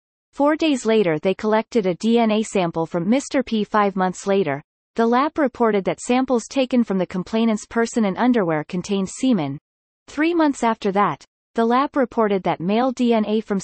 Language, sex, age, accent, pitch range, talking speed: English, female, 30-49, American, 185-245 Hz, 170 wpm